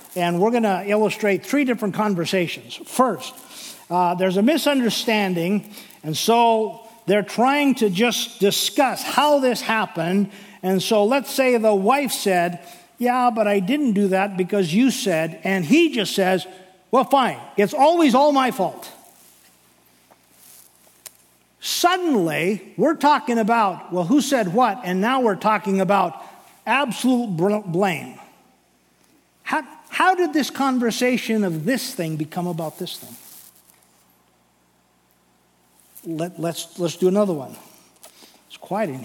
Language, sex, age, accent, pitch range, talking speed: English, male, 50-69, American, 165-240 Hz, 130 wpm